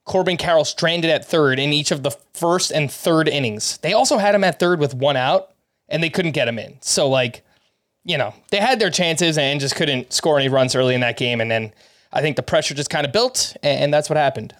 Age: 20-39